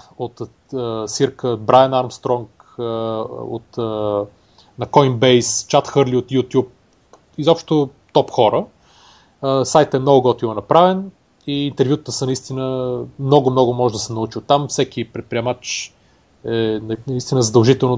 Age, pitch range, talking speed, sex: 30-49, 110-135 Hz, 125 wpm, male